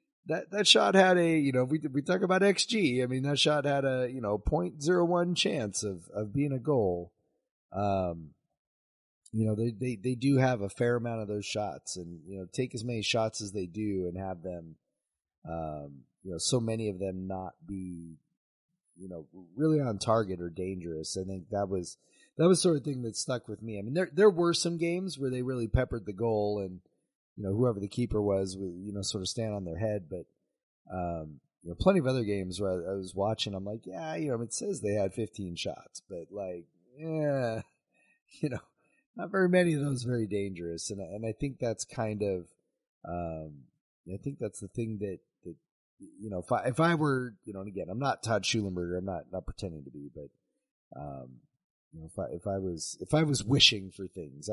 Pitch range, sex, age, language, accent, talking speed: 95-135 Hz, male, 30-49, English, American, 220 wpm